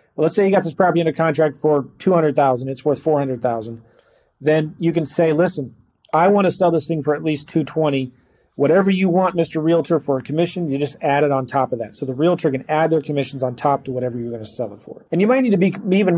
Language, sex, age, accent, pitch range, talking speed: English, male, 40-59, American, 135-165 Hz, 255 wpm